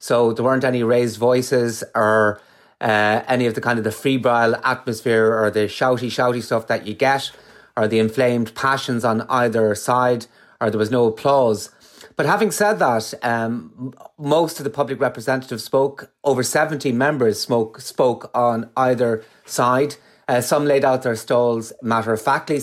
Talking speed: 170 wpm